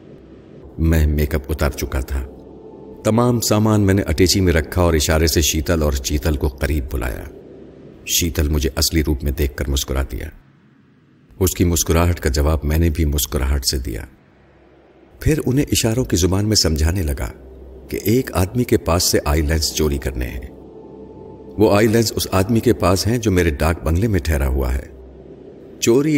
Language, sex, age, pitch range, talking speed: Urdu, male, 50-69, 75-95 Hz, 180 wpm